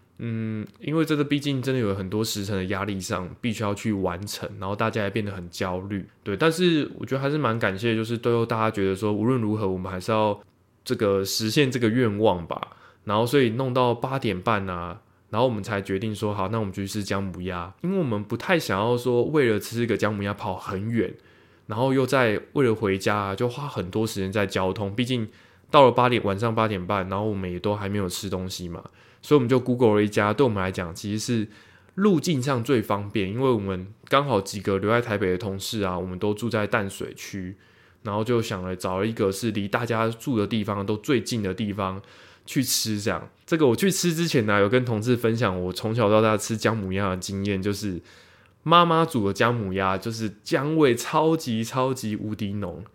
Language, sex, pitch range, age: Chinese, male, 100-125 Hz, 20-39